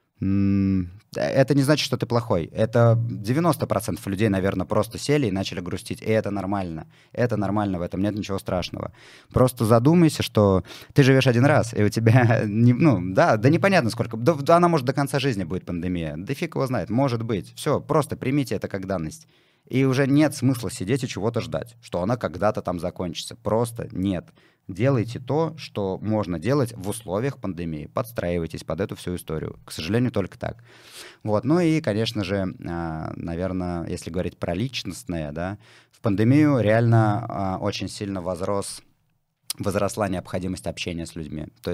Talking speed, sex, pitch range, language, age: 165 wpm, male, 90-120 Hz, Russian, 20-39